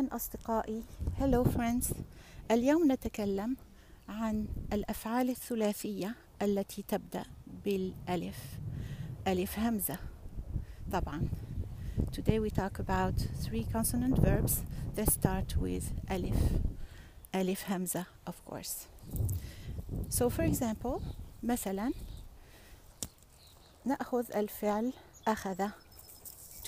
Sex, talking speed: female, 65 wpm